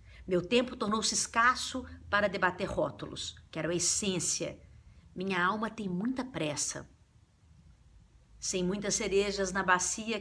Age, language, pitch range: 50-69, Portuguese, 145-195 Hz